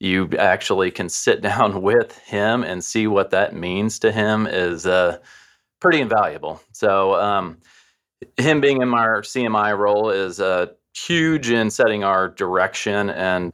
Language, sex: English, male